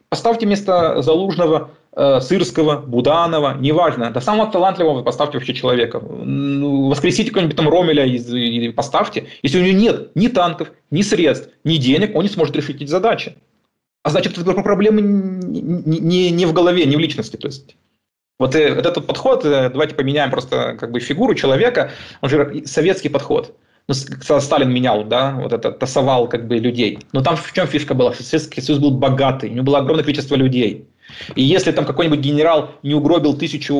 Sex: male